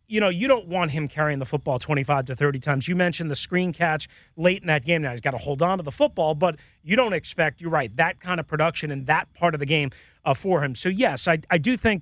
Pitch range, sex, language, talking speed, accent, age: 165-225 Hz, male, English, 280 wpm, American, 30-49